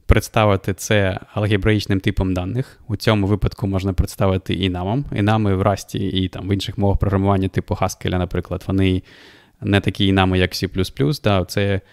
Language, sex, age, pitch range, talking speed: Ukrainian, male, 20-39, 95-105 Hz, 160 wpm